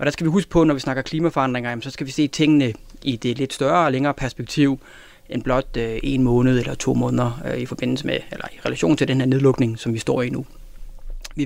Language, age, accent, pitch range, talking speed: Danish, 30-49, native, 130-150 Hz, 235 wpm